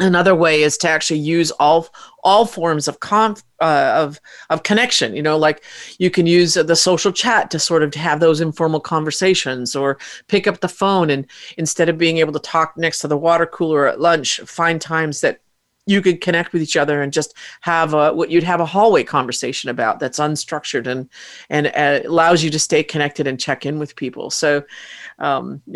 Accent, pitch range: American, 150-180 Hz